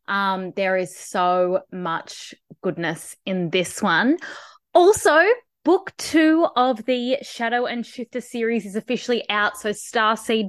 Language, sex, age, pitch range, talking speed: English, female, 20-39, 170-225 Hz, 130 wpm